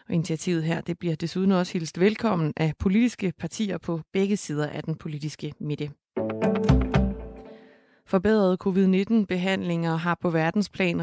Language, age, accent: Danish, 30-49, native